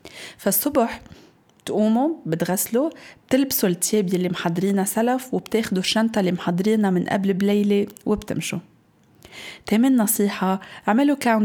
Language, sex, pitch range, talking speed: Arabic, female, 180-225 Hz, 100 wpm